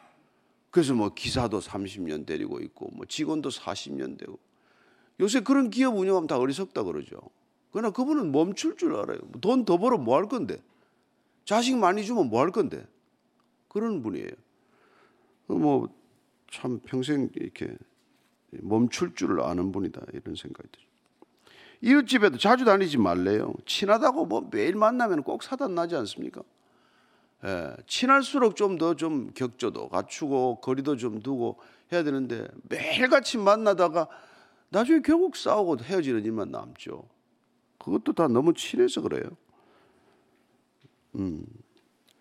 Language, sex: Korean, male